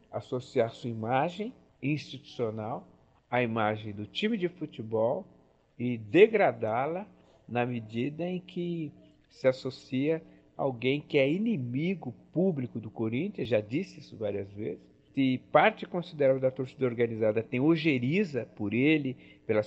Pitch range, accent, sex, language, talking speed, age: 110-140 Hz, Brazilian, male, Portuguese, 125 wpm, 60-79